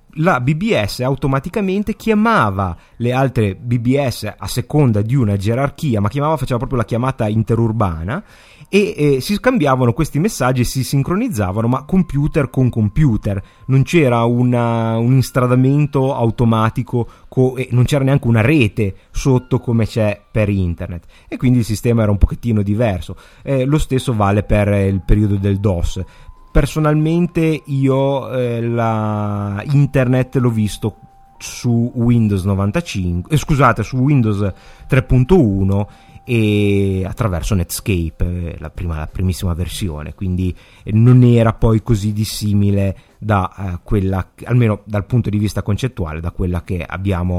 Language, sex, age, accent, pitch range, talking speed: Italian, male, 30-49, native, 100-135 Hz, 140 wpm